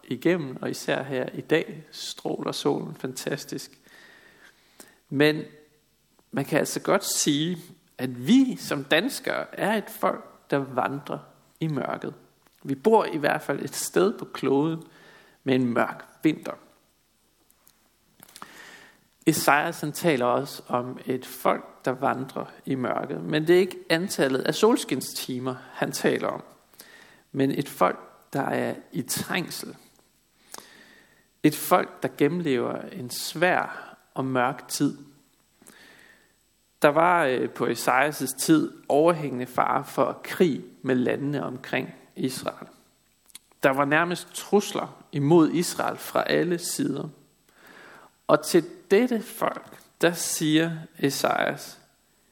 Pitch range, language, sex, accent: 135-175 Hz, Danish, male, native